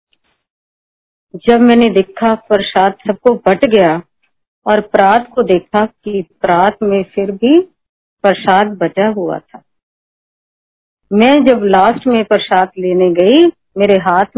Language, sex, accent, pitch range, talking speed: Hindi, female, native, 180-240 Hz, 120 wpm